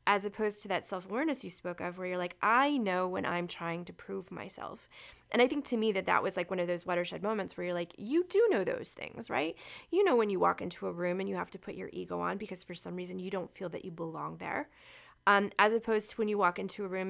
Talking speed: 275 wpm